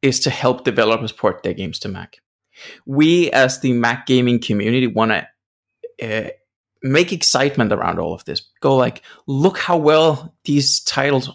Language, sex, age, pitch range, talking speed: English, male, 20-39, 105-135 Hz, 165 wpm